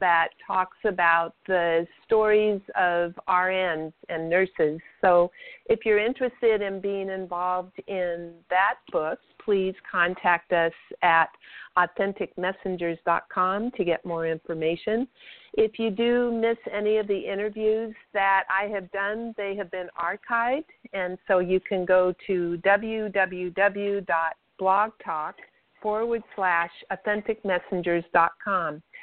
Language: English